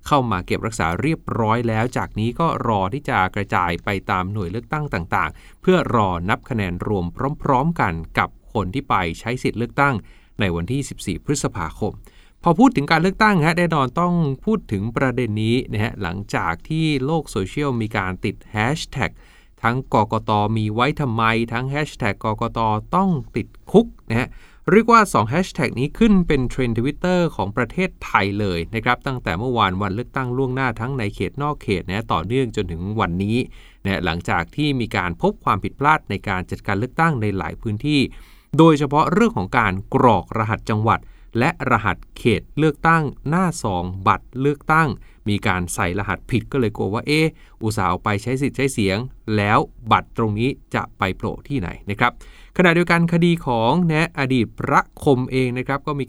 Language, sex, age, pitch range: Thai, male, 20-39, 105-145 Hz